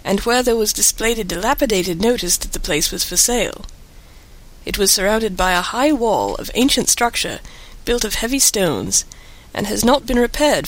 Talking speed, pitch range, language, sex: 185 wpm, 195-245 Hz, English, female